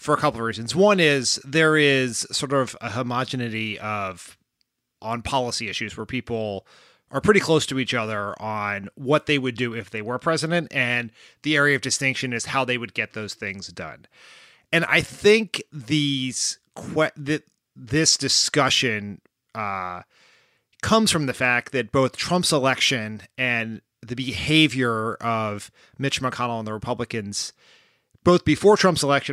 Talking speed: 155 wpm